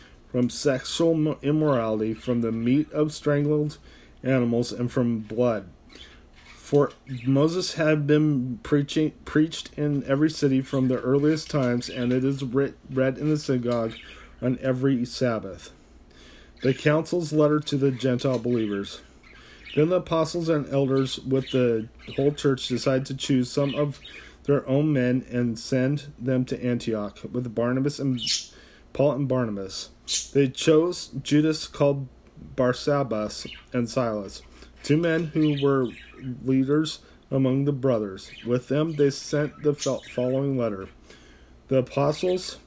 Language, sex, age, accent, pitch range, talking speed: English, male, 40-59, American, 115-145 Hz, 135 wpm